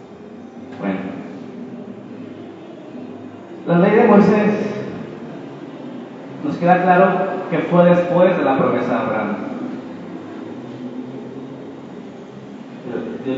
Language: Spanish